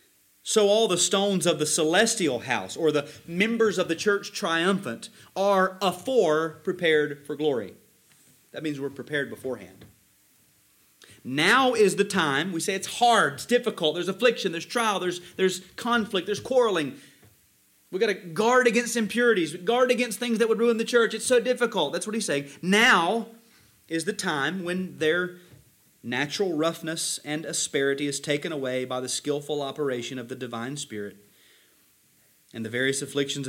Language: English